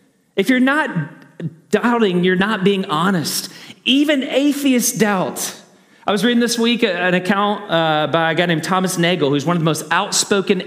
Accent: American